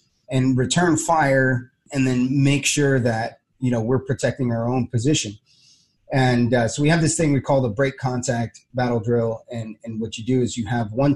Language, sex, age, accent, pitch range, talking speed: English, male, 30-49, American, 120-140 Hz, 205 wpm